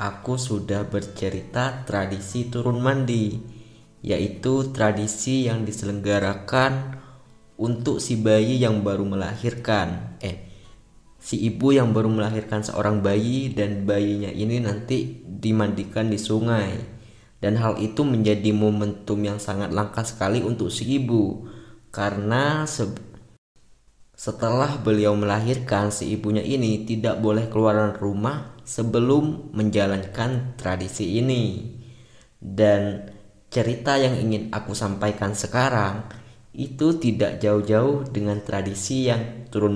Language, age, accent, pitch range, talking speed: Indonesian, 20-39, native, 105-120 Hz, 110 wpm